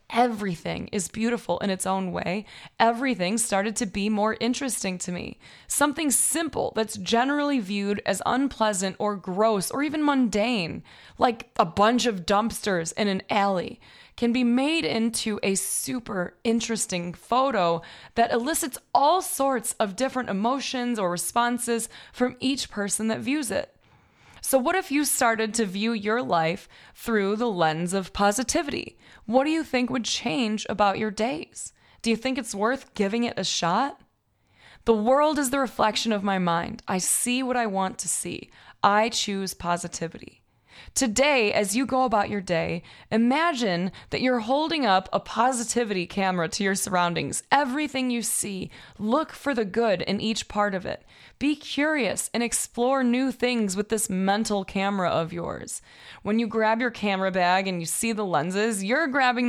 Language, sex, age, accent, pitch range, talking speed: English, female, 20-39, American, 195-255 Hz, 165 wpm